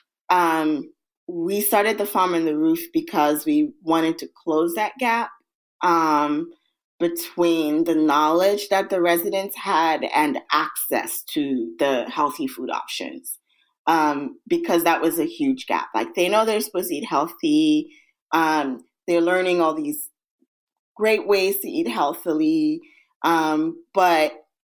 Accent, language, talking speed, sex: American, English, 140 wpm, female